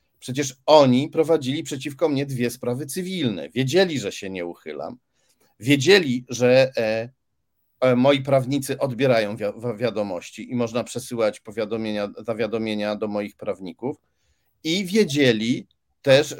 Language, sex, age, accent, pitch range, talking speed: Polish, male, 40-59, native, 120-165 Hz, 105 wpm